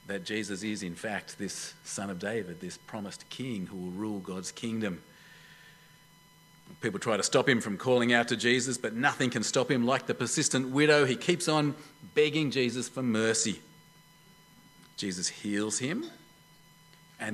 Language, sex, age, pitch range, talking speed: English, male, 40-59, 115-165 Hz, 165 wpm